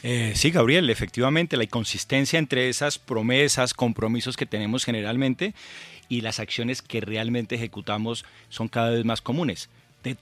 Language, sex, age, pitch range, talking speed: Spanish, male, 30-49, 110-130 Hz, 145 wpm